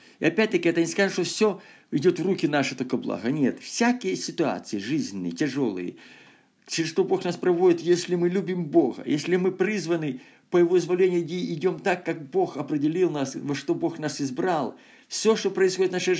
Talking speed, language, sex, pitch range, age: 180 wpm, Russian, male, 145-220 Hz, 50-69